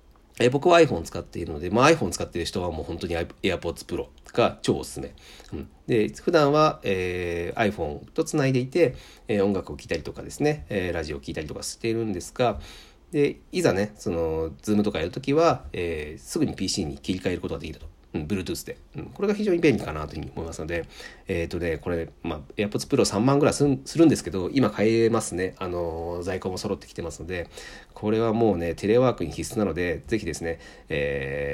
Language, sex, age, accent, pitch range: Japanese, male, 40-59, native, 80-115 Hz